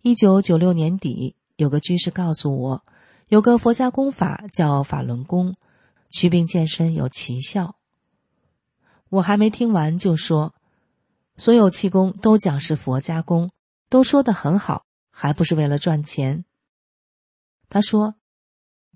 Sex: female